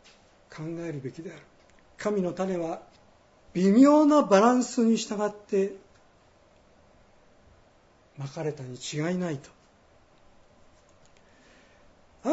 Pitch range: 160-250 Hz